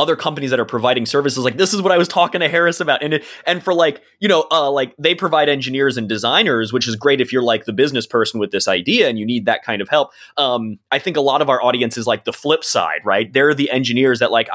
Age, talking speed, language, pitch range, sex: 20-39, 275 wpm, English, 120-170 Hz, male